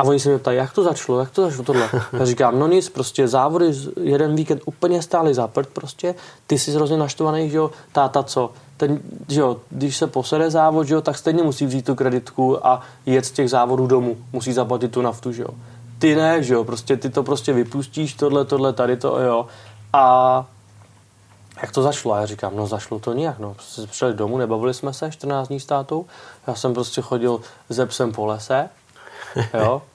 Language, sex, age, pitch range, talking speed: Czech, male, 20-39, 120-140 Hz, 205 wpm